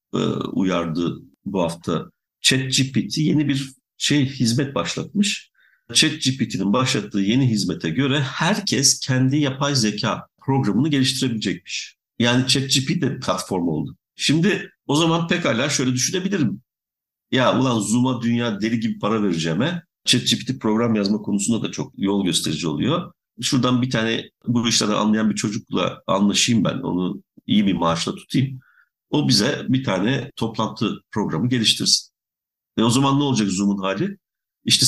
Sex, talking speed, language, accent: male, 135 wpm, Turkish, native